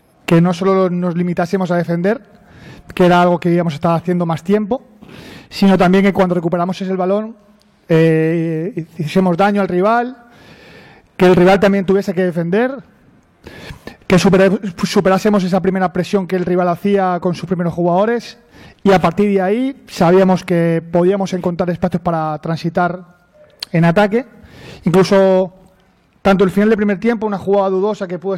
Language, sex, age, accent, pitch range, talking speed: Spanish, male, 20-39, Spanish, 180-200 Hz, 160 wpm